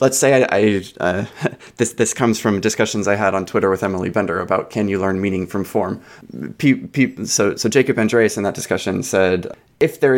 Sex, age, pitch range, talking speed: male, 20-39, 95-110 Hz, 210 wpm